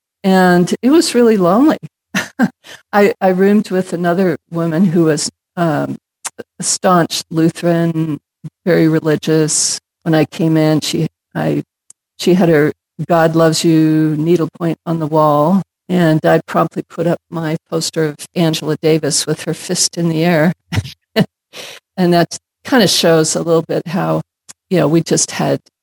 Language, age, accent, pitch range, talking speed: English, 50-69, American, 160-190 Hz, 150 wpm